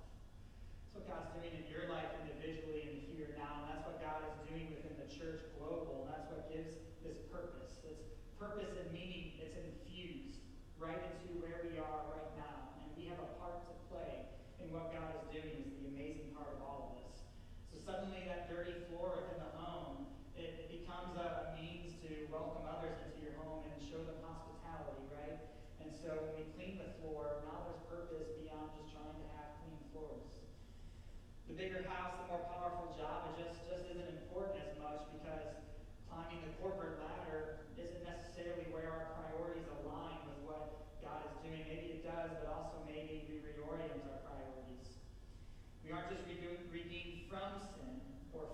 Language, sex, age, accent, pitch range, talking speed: English, male, 30-49, American, 150-170 Hz, 175 wpm